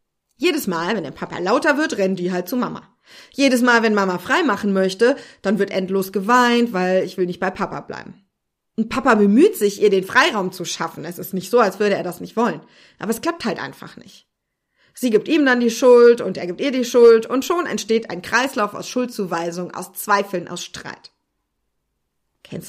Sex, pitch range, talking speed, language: female, 190-255 Hz, 210 wpm, German